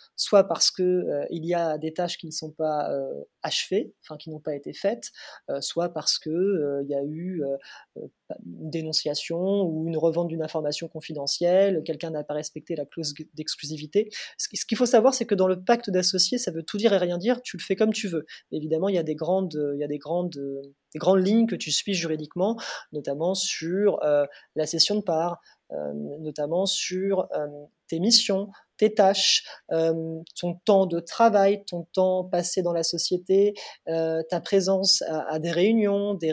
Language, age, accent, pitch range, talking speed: French, 30-49, French, 155-190 Hz, 195 wpm